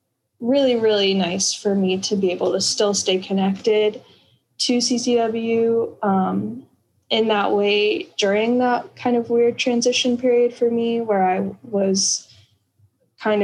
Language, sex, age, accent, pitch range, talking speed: English, female, 10-29, American, 190-220 Hz, 140 wpm